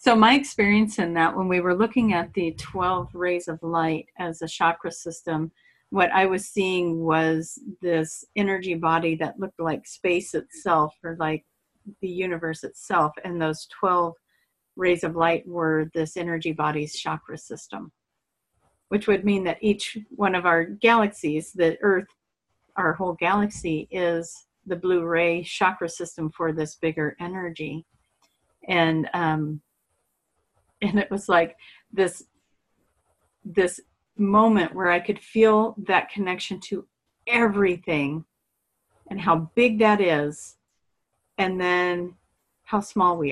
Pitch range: 160-195 Hz